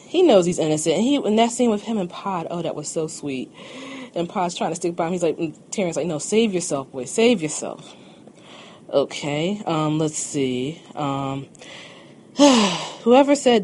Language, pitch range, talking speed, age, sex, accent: English, 140-210 Hz, 185 wpm, 20-39, female, American